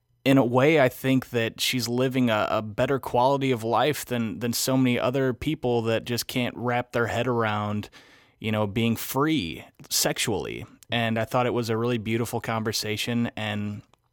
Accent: American